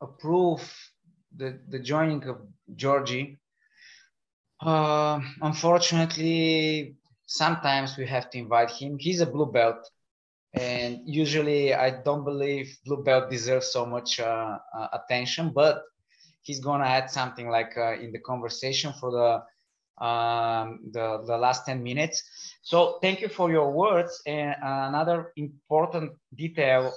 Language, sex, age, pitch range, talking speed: Bulgarian, male, 20-39, 130-160 Hz, 130 wpm